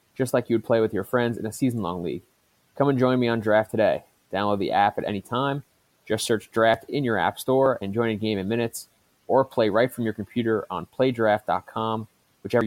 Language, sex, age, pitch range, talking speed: English, male, 20-39, 105-120 Hz, 225 wpm